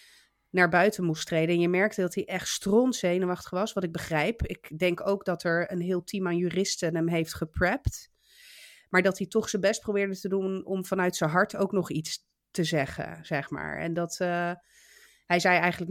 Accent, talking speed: Dutch, 210 wpm